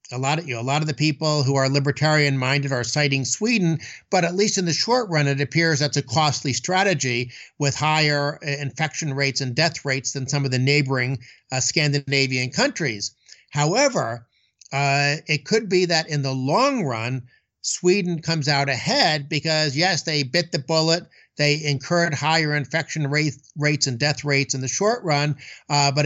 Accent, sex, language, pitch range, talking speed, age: American, male, English, 140-165 Hz, 180 wpm, 60-79